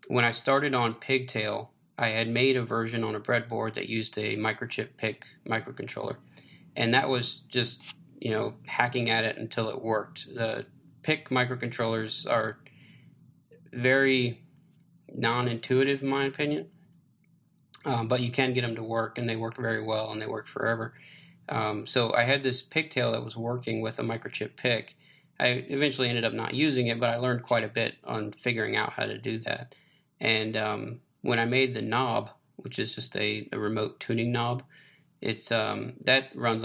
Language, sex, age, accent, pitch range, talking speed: English, male, 20-39, American, 110-135 Hz, 180 wpm